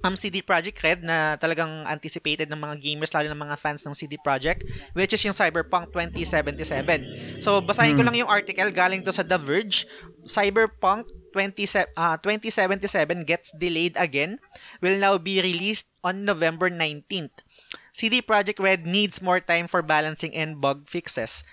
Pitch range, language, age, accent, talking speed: 160-195 Hz, Filipino, 20-39, native, 160 wpm